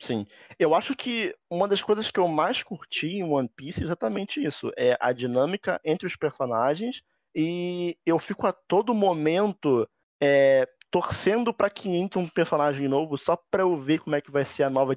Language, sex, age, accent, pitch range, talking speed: Portuguese, male, 20-39, Brazilian, 135-195 Hz, 195 wpm